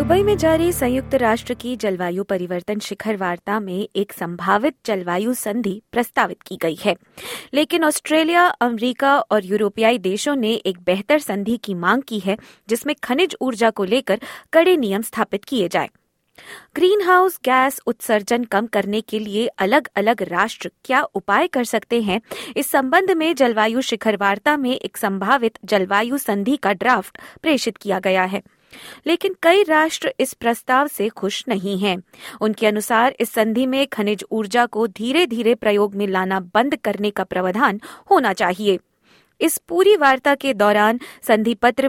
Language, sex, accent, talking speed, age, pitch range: Hindi, female, native, 160 wpm, 20-39, 205-285 Hz